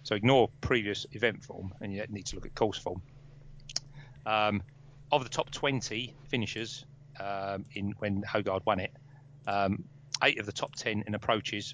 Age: 30-49